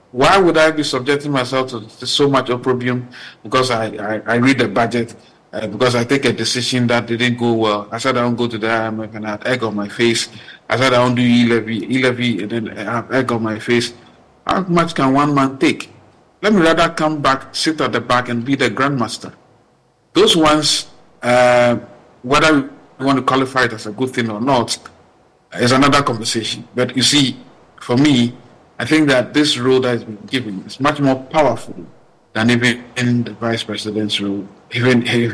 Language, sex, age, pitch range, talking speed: English, male, 50-69, 110-130 Hz, 205 wpm